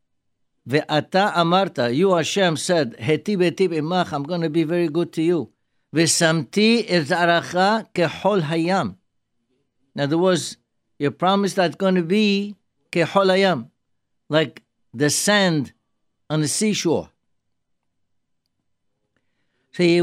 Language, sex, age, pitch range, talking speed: English, male, 60-79, 125-190 Hz, 95 wpm